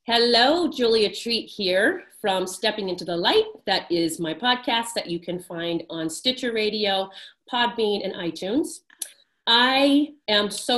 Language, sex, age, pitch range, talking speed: English, female, 30-49, 195-270 Hz, 145 wpm